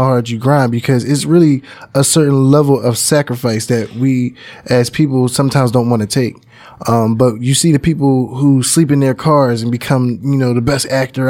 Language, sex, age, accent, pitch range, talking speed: English, male, 10-29, American, 120-140 Hz, 200 wpm